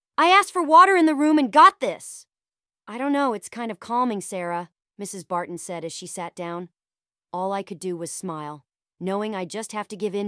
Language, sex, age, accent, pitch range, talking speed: English, female, 30-49, American, 195-280 Hz, 220 wpm